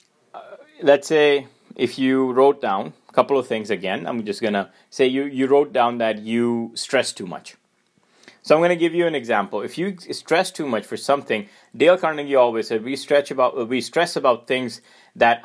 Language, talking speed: English, 195 wpm